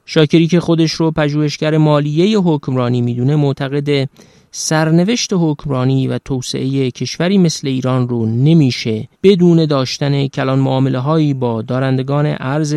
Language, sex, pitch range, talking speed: Persian, male, 130-155 Hz, 125 wpm